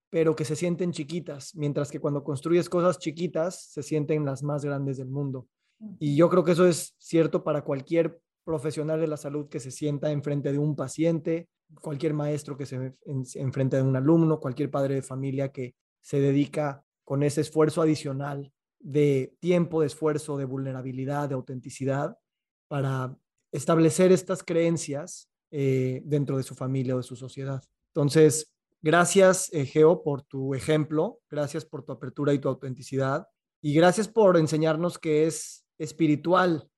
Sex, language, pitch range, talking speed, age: male, Spanish, 140-165 Hz, 160 wpm, 20-39